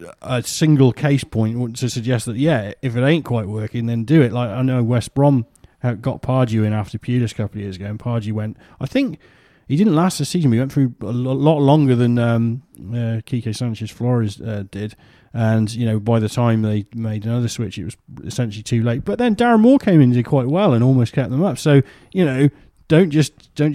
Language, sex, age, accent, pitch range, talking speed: English, male, 30-49, British, 115-165 Hz, 230 wpm